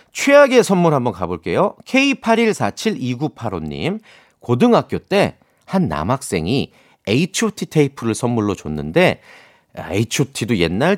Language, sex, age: Korean, male, 40-59